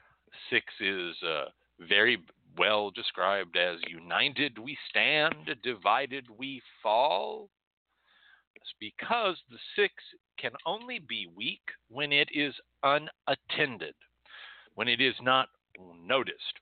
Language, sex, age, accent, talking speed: English, male, 60-79, American, 105 wpm